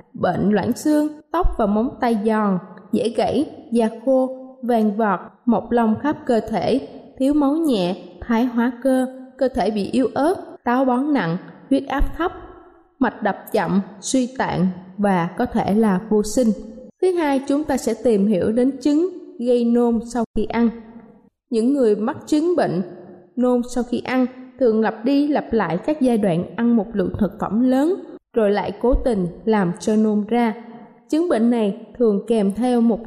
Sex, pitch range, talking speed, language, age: female, 210-255 Hz, 180 wpm, Vietnamese, 20-39